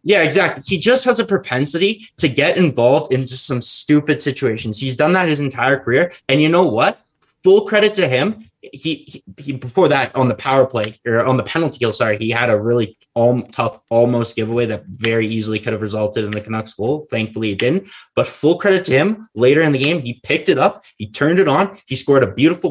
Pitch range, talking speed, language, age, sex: 115-145 Hz, 225 wpm, English, 20-39, male